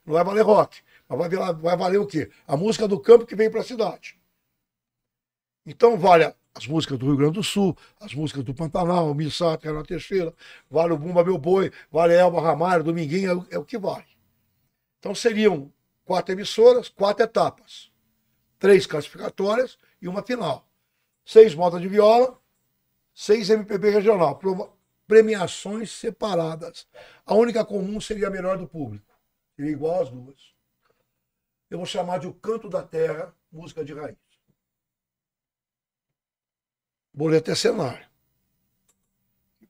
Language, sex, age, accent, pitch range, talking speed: Portuguese, male, 60-79, Brazilian, 145-205 Hz, 145 wpm